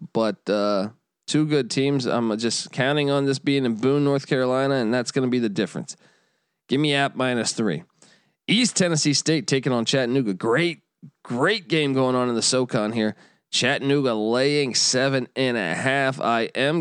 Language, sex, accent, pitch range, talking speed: English, male, American, 120-145 Hz, 180 wpm